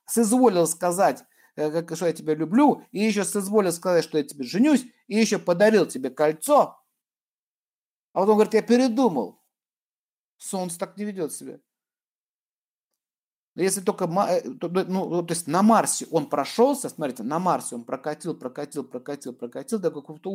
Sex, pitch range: male, 155-215 Hz